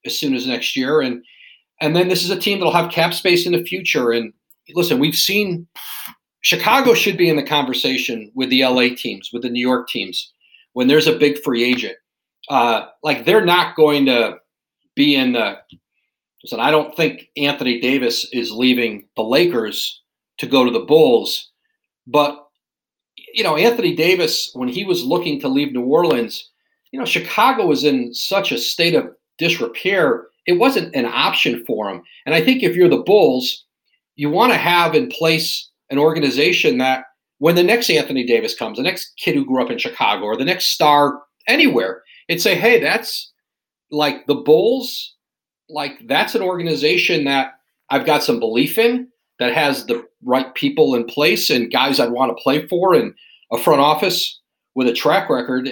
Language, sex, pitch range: English, male, 130-205 Hz